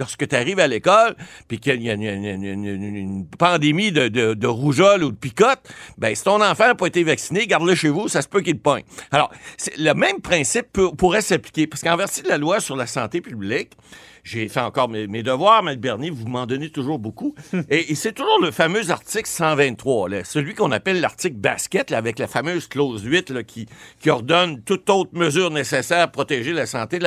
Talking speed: 220 wpm